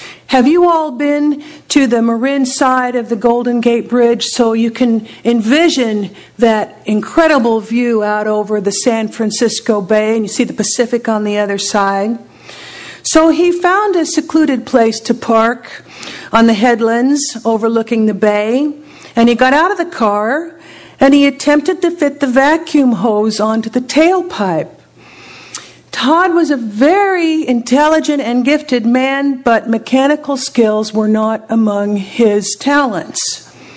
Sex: female